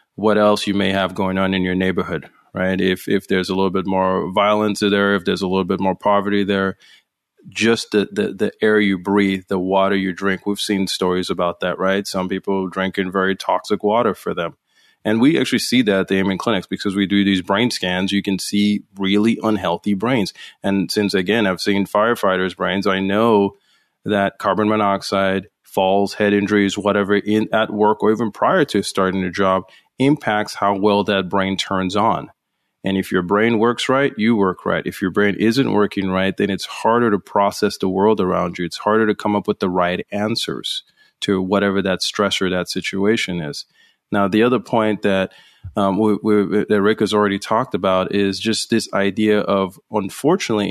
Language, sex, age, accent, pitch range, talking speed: English, male, 30-49, American, 95-105 Hz, 195 wpm